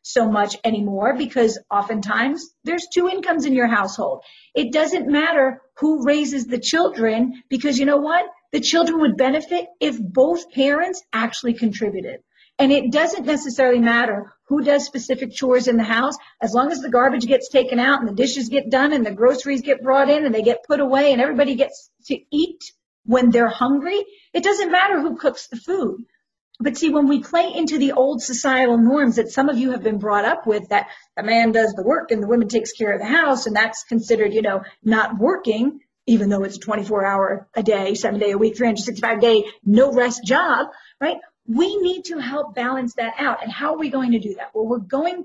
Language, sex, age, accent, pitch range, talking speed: English, female, 40-59, American, 230-290 Hz, 210 wpm